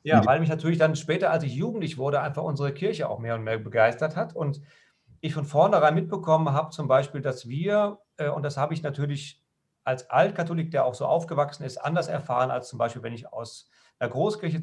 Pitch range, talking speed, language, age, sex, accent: 130-165 Hz, 210 wpm, German, 40-59, male, German